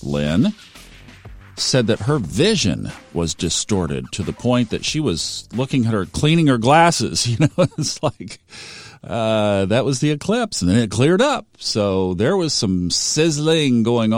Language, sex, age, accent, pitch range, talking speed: English, male, 50-69, American, 95-125 Hz, 165 wpm